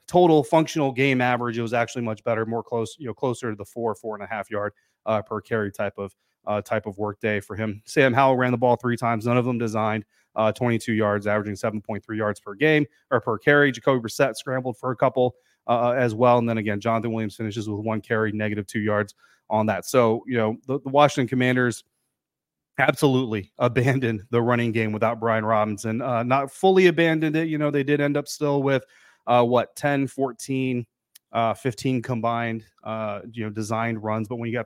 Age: 30-49